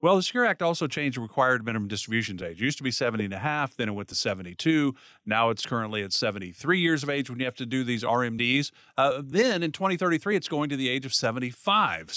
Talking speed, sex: 245 wpm, male